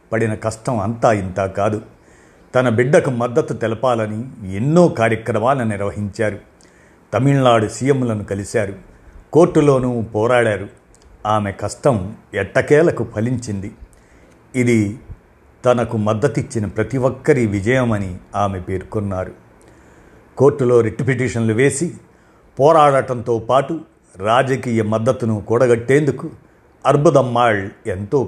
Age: 50-69